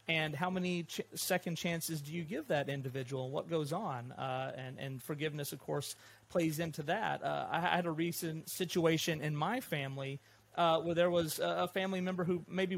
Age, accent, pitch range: 30-49, American, 135-170 Hz